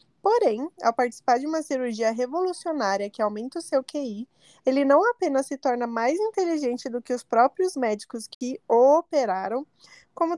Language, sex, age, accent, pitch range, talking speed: Portuguese, female, 20-39, Brazilian, 220-280 Hz, 160 wpm